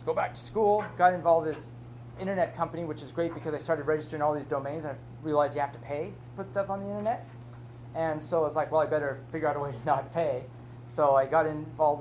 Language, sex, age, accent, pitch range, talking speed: English, male, 30-49, American, 120-155 Hz, 260 wpm